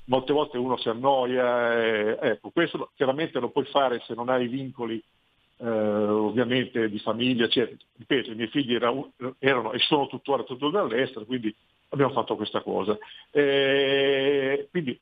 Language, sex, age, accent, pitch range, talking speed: Italian, male, 50-69, native, 115-140 Hz, 160 wpm